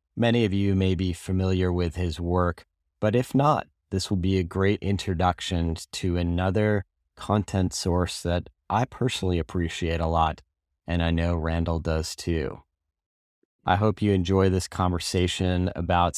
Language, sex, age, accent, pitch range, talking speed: English, male, 30-49, American, 85-105 Hz, 150 wpm